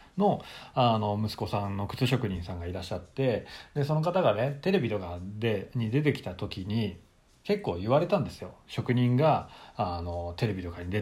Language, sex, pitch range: Japanese, male, 95-135 Hz